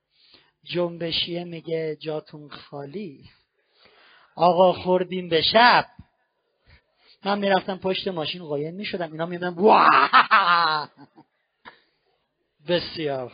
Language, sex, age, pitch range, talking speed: Persian, male, 50-69, 155-210 Hz, 75 wpm